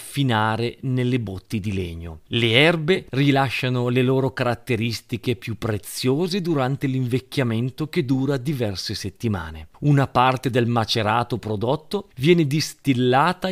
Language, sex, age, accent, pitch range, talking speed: Italian, male, 40-59, native, 115-145 Hz, 115 wpm